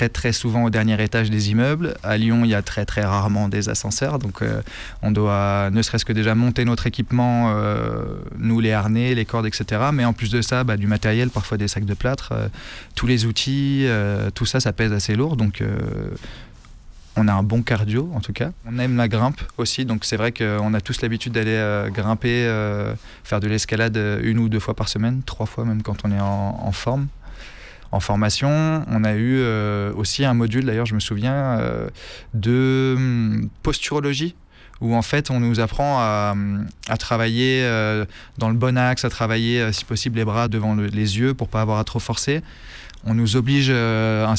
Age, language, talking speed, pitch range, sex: 20-39, French, 205 wpm, 105-125 Hz, male